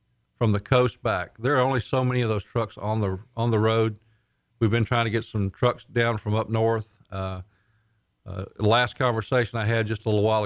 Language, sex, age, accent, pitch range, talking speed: English, male, 50-69, American, 105-125 Hz, 225 wpm